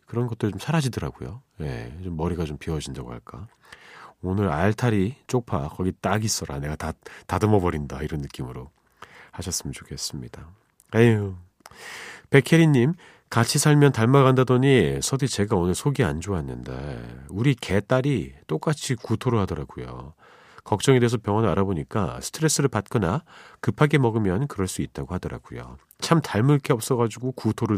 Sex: male